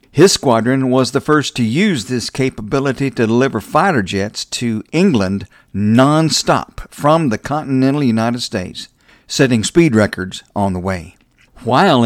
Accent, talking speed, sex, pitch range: American, 140 wpm, male, 105-145 Hz